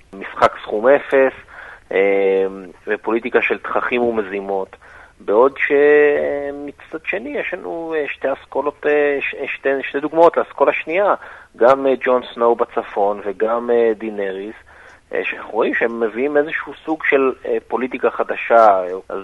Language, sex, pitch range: Hebrew, male, 115-150 Hz